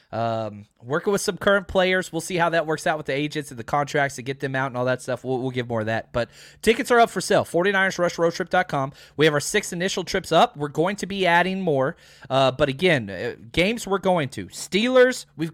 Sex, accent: male, American